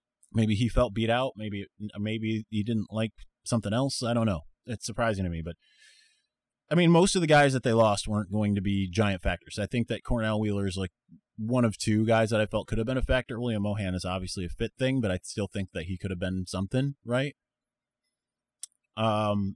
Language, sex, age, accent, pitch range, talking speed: English, male, 30-49, American, 95-120 Hz, 225 wpm